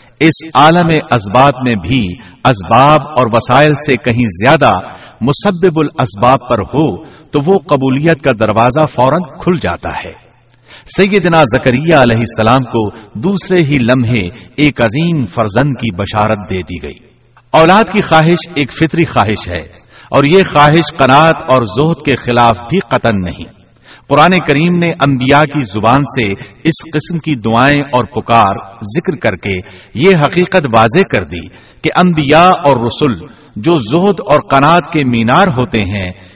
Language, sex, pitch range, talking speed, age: Urdu, male, 115-160 Hz, 150 wpm, 60-79